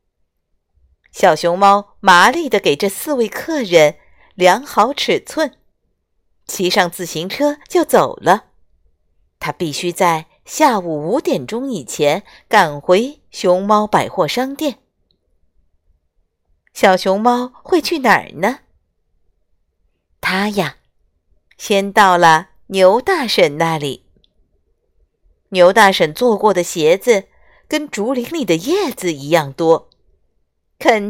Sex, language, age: female, Chinese, 50-69